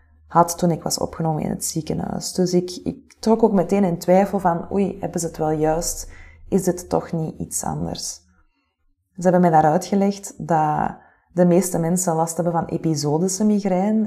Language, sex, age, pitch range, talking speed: Dutch, female, 20-39, 155-185 Hz, 185 wpm